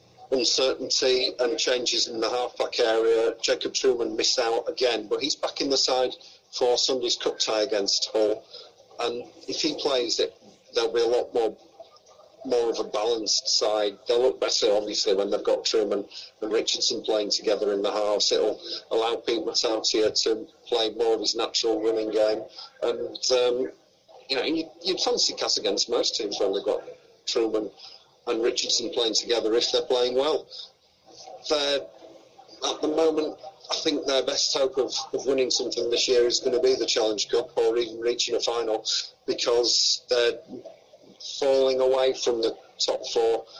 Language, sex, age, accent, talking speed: English, male, 40-59, British, 170 wpm